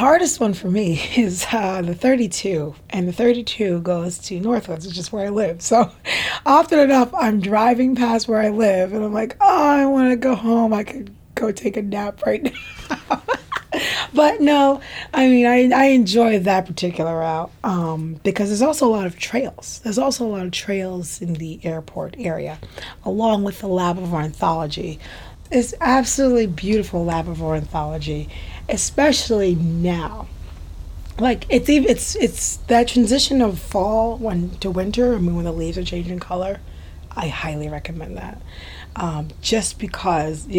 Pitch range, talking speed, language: 165-225 Hz, 170 wpm, English